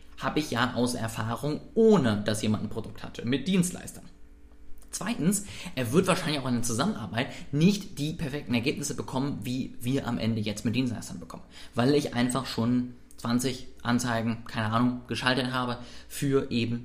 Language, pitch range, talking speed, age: German, 110-145 Hz, 165 wpm, 20-39